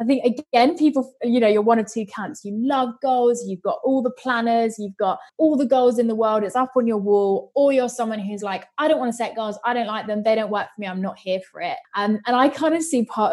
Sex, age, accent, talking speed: female, 20-39, British, 290 wpm